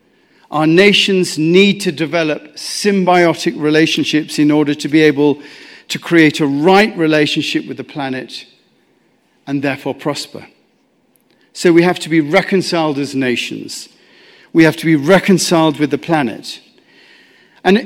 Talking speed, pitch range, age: 135 wpm, 150-190 Hz, 50-69